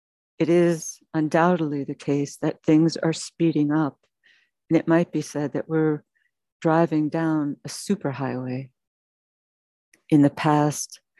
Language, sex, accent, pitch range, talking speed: English, female, American, 145-165 Hz, 130 wpm